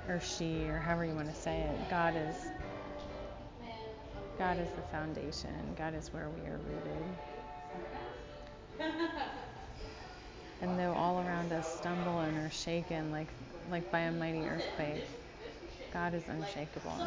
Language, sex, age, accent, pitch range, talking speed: English, female, 30-49, American, 160-190 Hz, 135 wpm